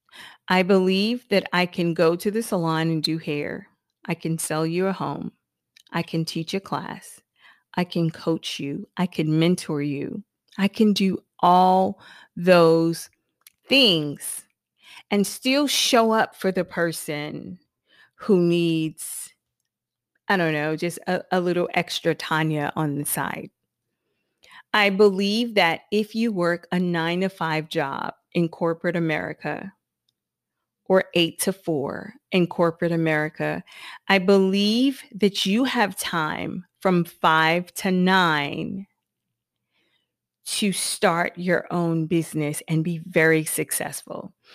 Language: English